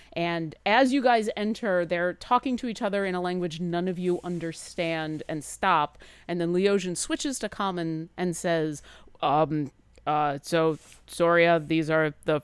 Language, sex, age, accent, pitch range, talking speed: English, female, 30-49, American, 160-220 Hz, 165 wpm